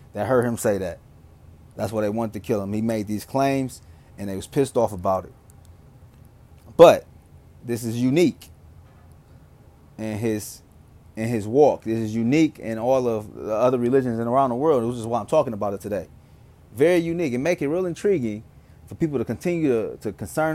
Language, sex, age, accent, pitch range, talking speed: English, male, 30-49, American, 105-140 Hz, 195 wpm